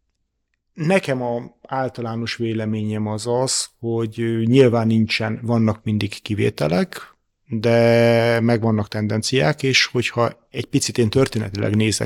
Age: 30-49